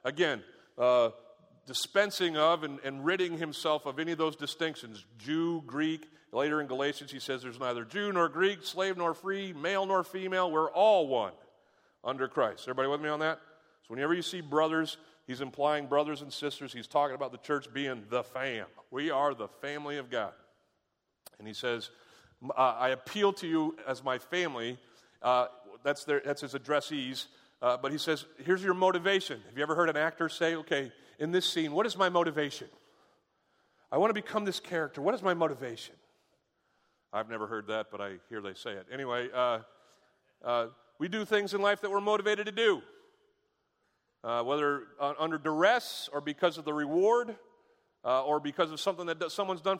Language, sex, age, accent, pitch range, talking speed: English, male, 40-59, American, 135-185 Hz, 185 wpm